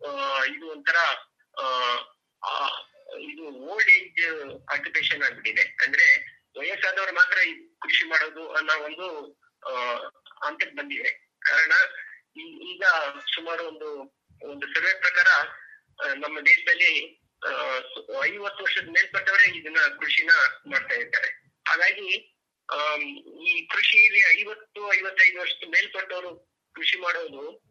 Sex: male